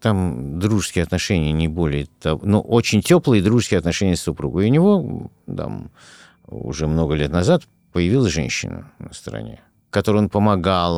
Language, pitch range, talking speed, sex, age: Russian, 80-110 Hz, 155 wpm, male, 50-69